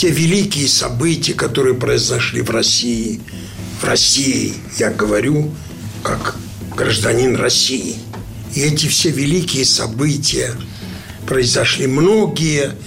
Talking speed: 100 wpm